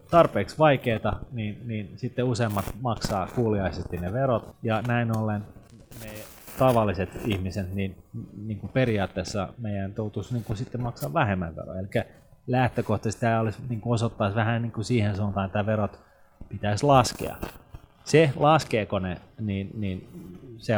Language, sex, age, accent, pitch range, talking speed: Finnish, male, 30-49, native, 100-120 Hz, 140 wpm